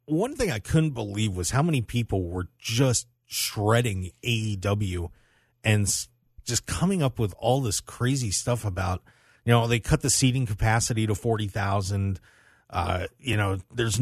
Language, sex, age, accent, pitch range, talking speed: English, male, 40-59, American, 105-130 Hz, 150 wpm